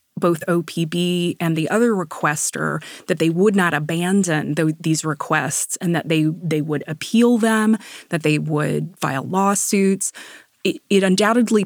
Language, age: English, 20-39